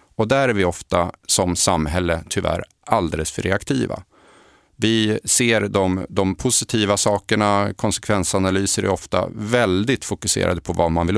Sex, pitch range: male, 90-110 Hz